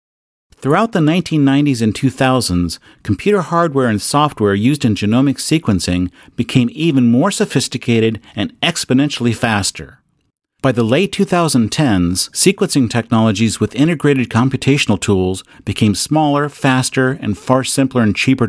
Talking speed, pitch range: 125 wpm, 100-145 Hz